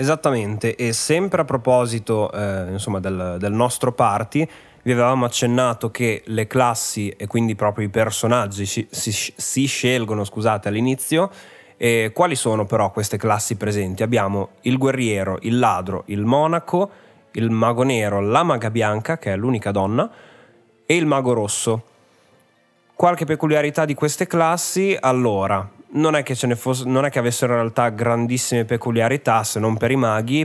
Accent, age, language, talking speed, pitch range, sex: native, 20-39, Italian, 155 wpm, 110-130 Hz, male